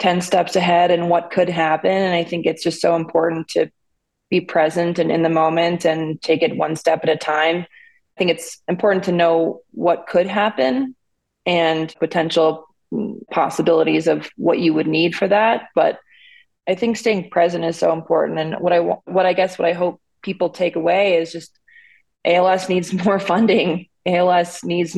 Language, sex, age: English, female, 20-39